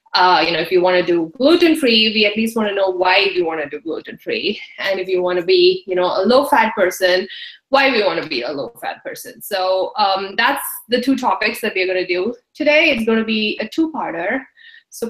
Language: English